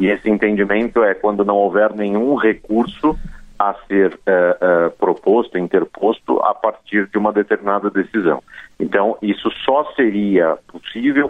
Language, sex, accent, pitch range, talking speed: Portuguese, male, Brazilian, 95-110 Hz, 140 wpm